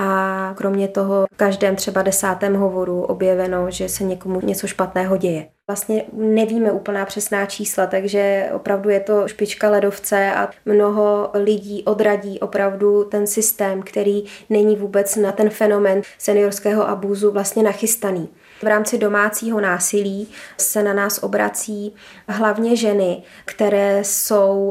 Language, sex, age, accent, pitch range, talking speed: Czech, female, 20-39, native, 195-210 Hz, 135 wpm